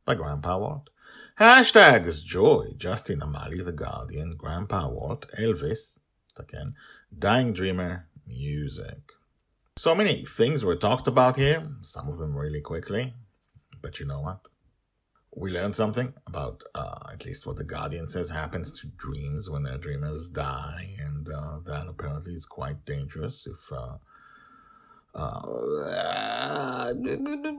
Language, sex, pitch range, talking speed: English, male, 75-120 Hz, 130 wpm